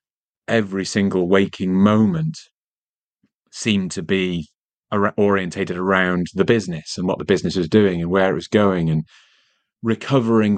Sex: male